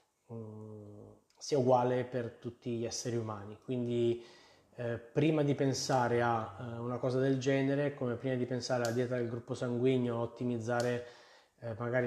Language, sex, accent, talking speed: Italian, male, native, 145 wpm